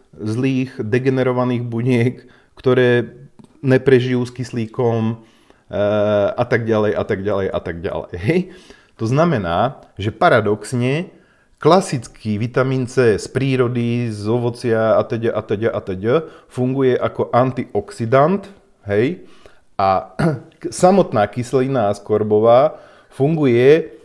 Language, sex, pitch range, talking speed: Slovak, male, 110-135 Hz, 105 wpm